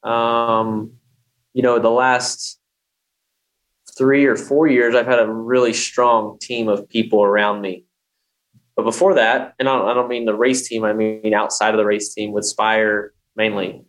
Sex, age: male, 20-39